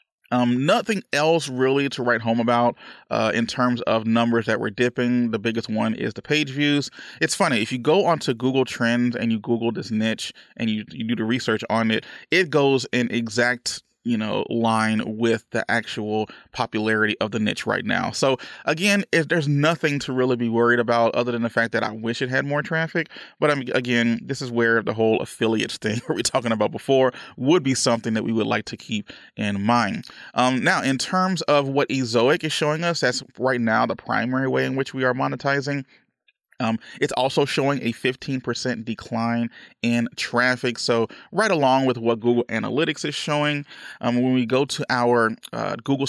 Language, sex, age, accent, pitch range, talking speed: English, male, 20-39, American, 115-140 Hz, 200 wpm